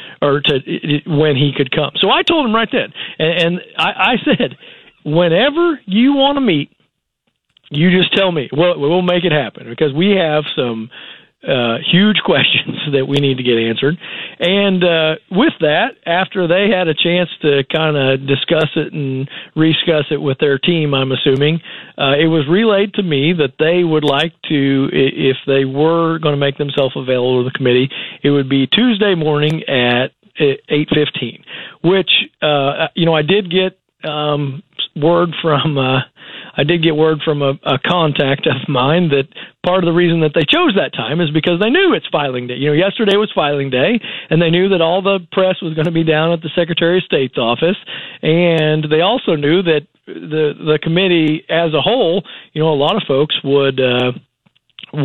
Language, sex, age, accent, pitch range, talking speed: English, male, 50-69, American, 140-175 Hz, 195 wpm